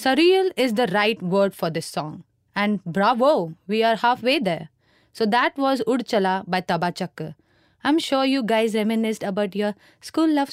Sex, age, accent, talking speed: female, 20-39, Indian, 165 wpm